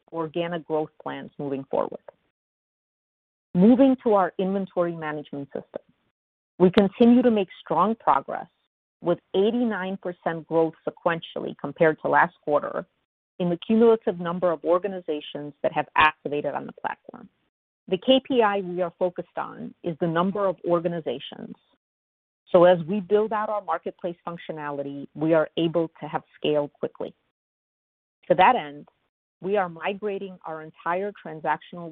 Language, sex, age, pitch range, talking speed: English, female, 40-59, 155-195 Hz, 135 wpm